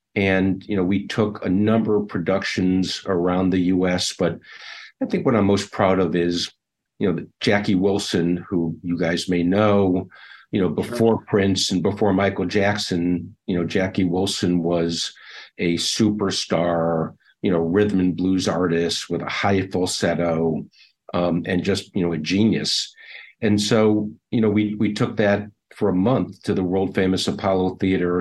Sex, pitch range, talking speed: male, 85-105 Hz, 165 wpm